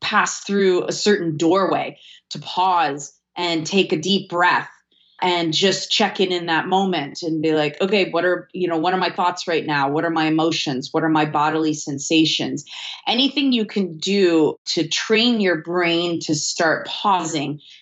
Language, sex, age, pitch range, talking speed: English, female, 30-49, 165-200 Hz, 180 wpm